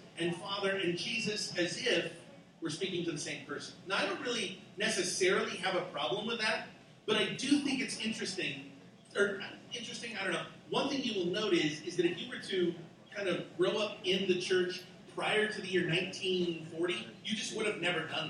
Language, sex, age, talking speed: English, male, 40-59, 205 wpm